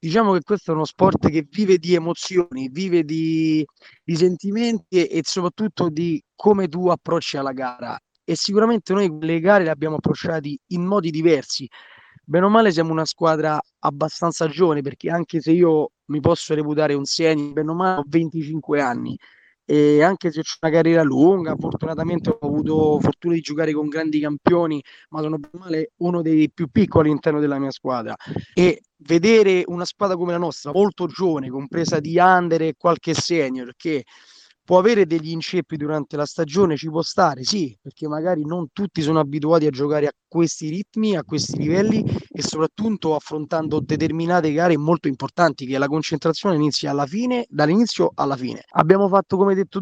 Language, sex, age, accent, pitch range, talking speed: Italian, male, 20-39, native, 155-180 Hz, 170 wpm